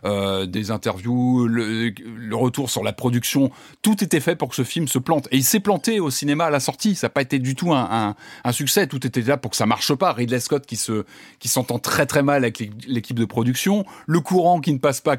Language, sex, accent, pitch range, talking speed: French, male, French, 115-150 Hz, 255 wpm